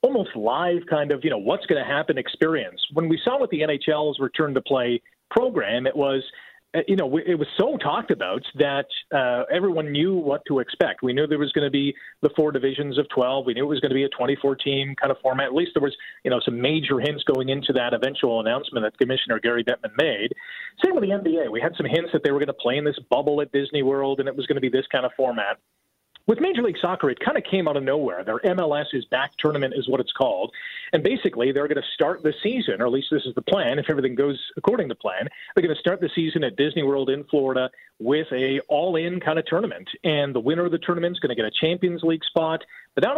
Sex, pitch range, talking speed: male, 135-175 Hz, 255 wpm